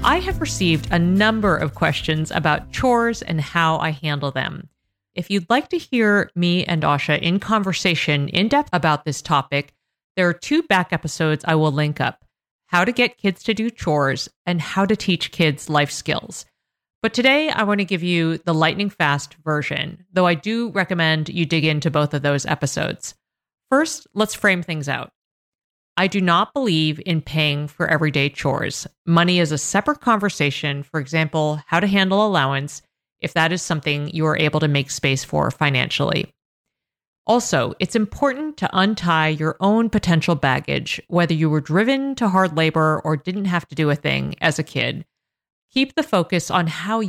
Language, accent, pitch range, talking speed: English, American, 150-195 Hz, 180 wpm